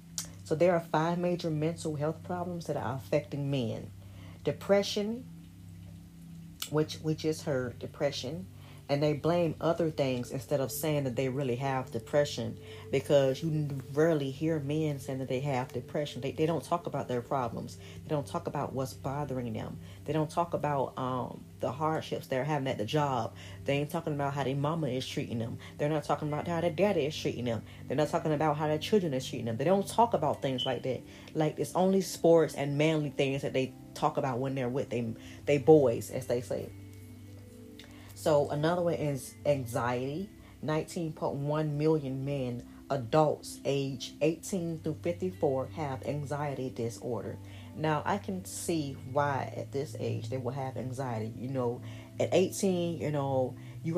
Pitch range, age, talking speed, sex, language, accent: 125-155 Hz, 40-59, 175 wpm, female, English, American